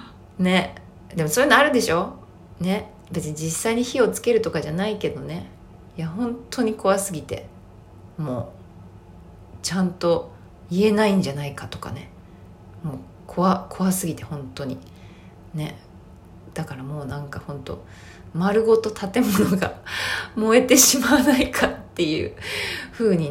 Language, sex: Japanese, female